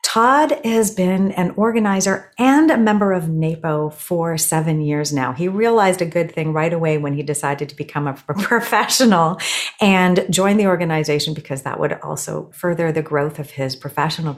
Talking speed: 175 wpm